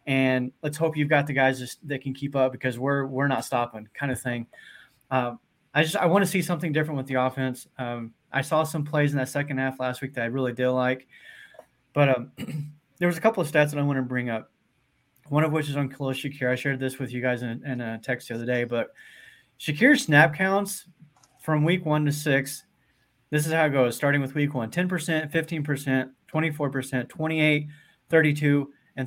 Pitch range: 130-160 Hz